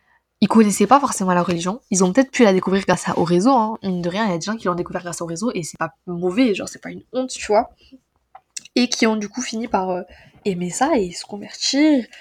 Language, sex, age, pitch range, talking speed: French, female, 20-39, 180-225 Hz, 270 wpm